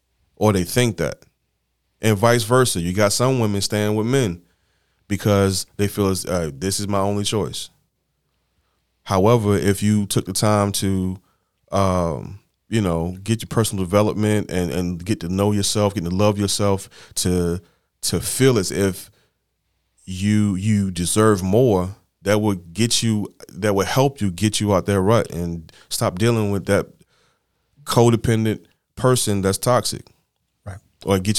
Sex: male